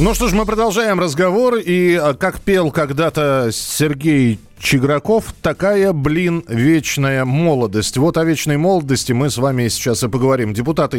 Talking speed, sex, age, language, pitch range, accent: 145 wpm, male, 40-59, Russian, 110-155 Hz, native